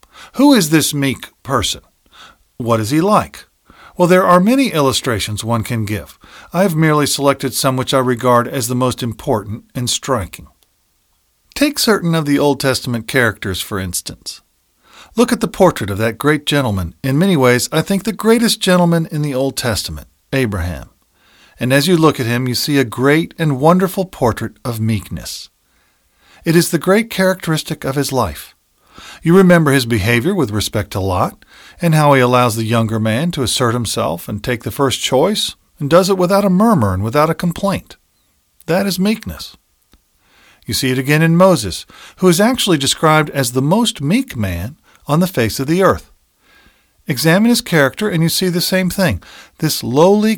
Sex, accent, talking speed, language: male, American, 180 wpm, English